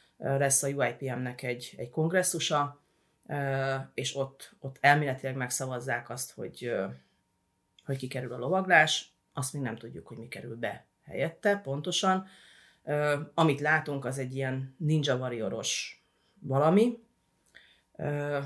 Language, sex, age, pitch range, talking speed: Hungarian, female, 30-49, 125-150 Hz, 115 wpm